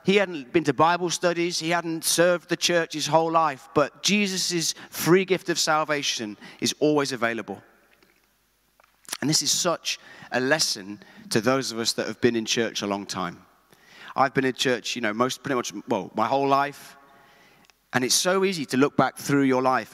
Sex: male